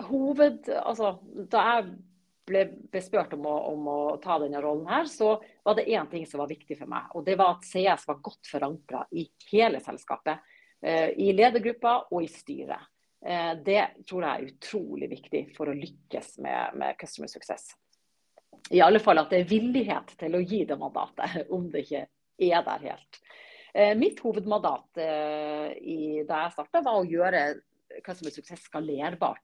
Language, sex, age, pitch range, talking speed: English, female, 40-59, 160-225 Hz, 180 wpm